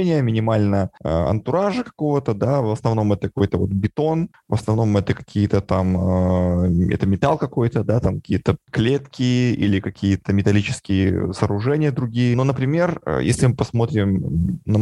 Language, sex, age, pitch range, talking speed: Russian, male, 20-39, 100-120 Hz, 145 wpm